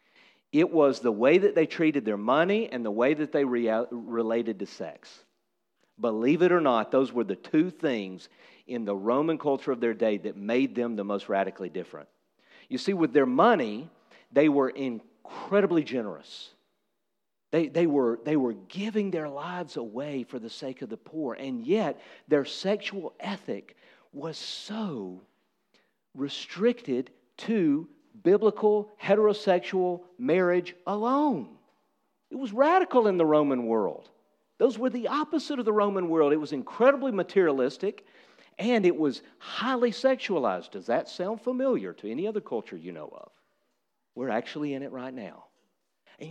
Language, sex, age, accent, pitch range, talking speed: English, male, 50-69, American, 130-215 Hz, 155 wpm